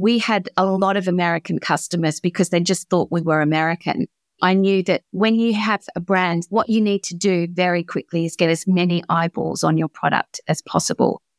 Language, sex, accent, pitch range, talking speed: English, female, Australian, 165-190 Hz, 205 wpm